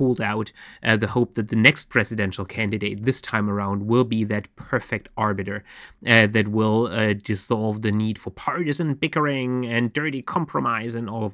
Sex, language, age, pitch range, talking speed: male, English, 30-49, 110-125 Hz, 175 wpm